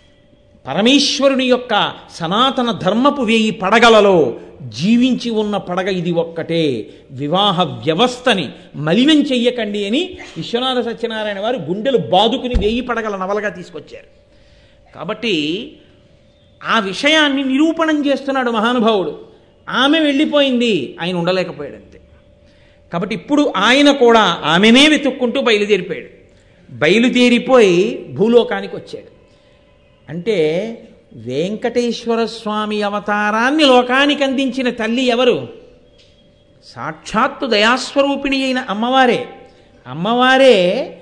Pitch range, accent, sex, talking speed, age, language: 190-260 Hz, native, male, 85 wpm, 50-69, Telugu